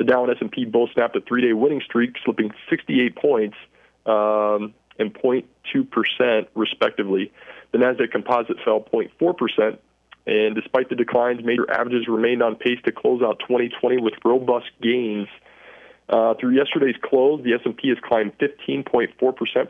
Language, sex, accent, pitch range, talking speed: English, male, American, 110-130 Hz, 145 wpm